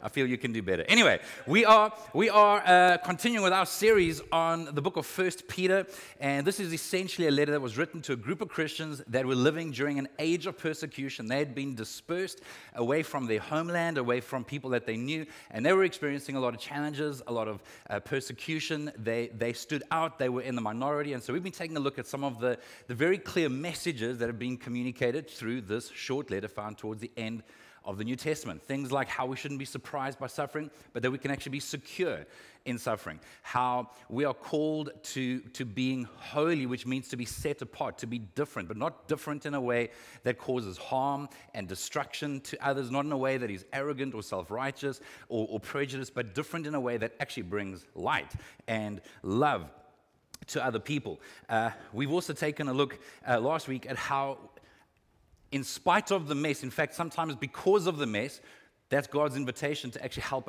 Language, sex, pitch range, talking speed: English, male, 125-155 Hz, 210 wpm